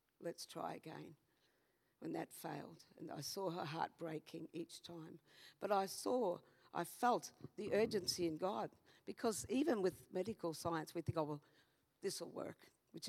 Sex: female